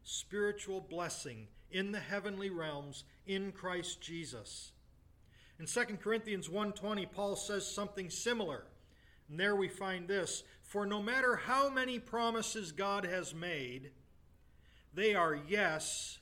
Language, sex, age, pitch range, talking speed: English, male, 40-59, 155-215 Hz, 125 wpm